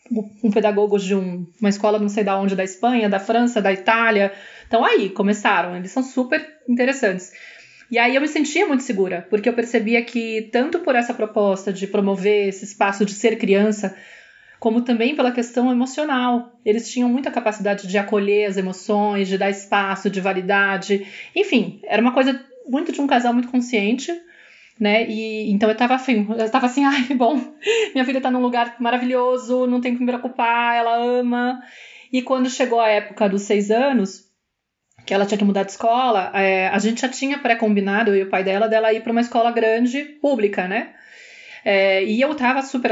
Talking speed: 190 wpm